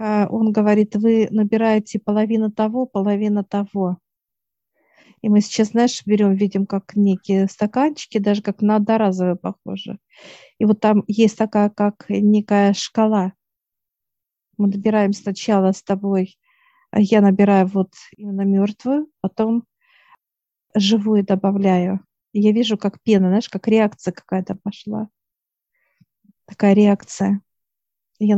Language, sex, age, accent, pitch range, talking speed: Russian, female, 50-69, native, 195-215 Hz, 115 wpm